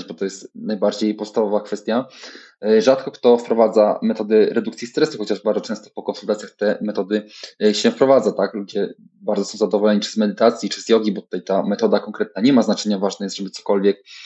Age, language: 20-39, Polish